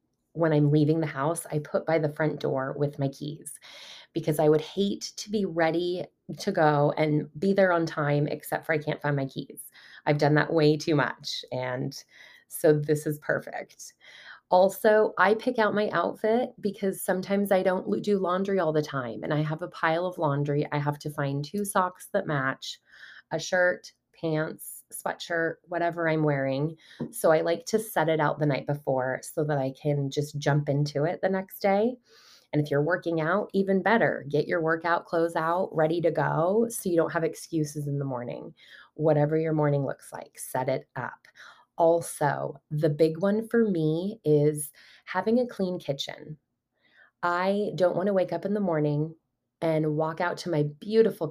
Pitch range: 150-180 Hz